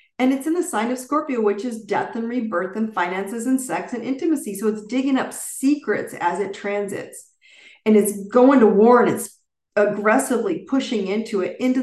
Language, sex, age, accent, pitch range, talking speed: English, female, 40-59, American, 205-255 Hz, 195 wpm